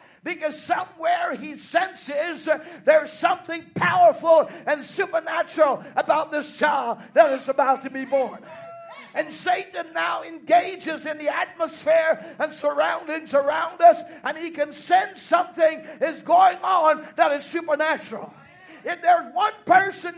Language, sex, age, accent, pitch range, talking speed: English, male, 60-79, American, 270-330 Hz, 130 wpm